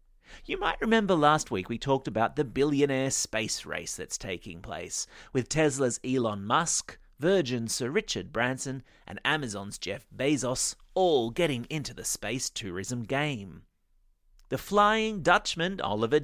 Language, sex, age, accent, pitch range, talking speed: English, male, 30-49, Australian, 120-185 Hz, 140 wpm